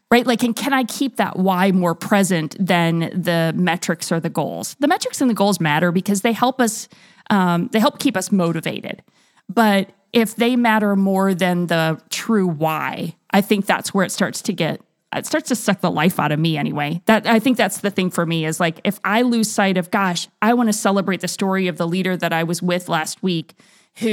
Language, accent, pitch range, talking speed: English, American, 170-210 Hz, 225 wpm